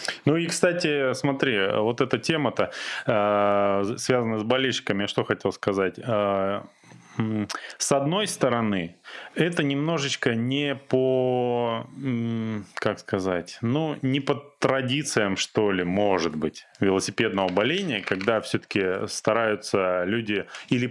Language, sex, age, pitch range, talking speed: Russian, male, 20-39, 105-140 Hz, 110 wpm